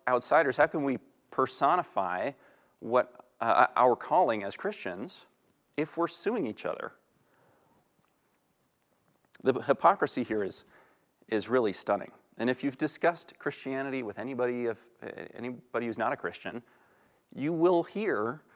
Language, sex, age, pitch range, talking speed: English, male, 30-49, 110-160 Hz, 125 wpm